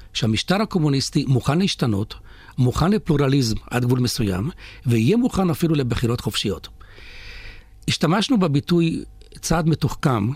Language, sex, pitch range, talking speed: Hebrew, male, 110-150 Hz, 105 wpm